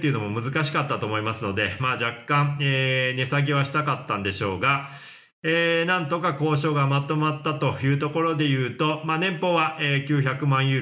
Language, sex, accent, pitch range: Japanese, male, native, 125-155 Hz